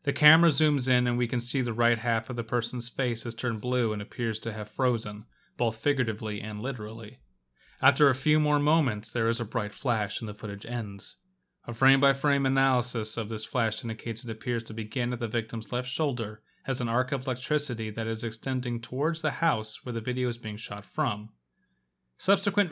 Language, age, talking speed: English, 30-49, 200 wpm